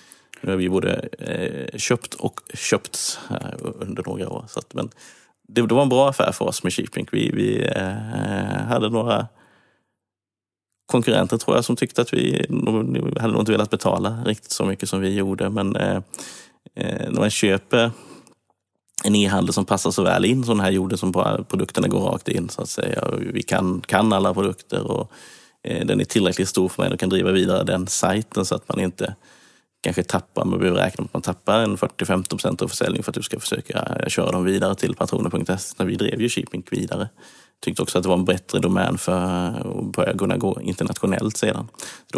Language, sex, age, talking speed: Swedish, male, 30-49, 185 wpm